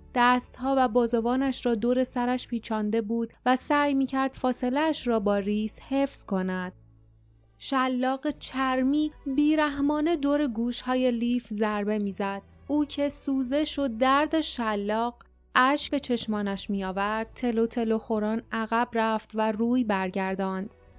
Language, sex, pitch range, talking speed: Persian, female, 215-265 Hz, 130 wpm